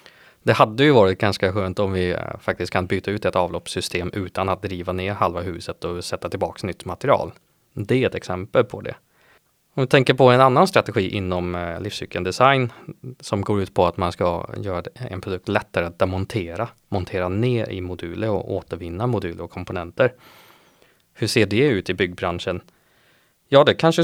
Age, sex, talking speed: 20-39, male, 175 wpm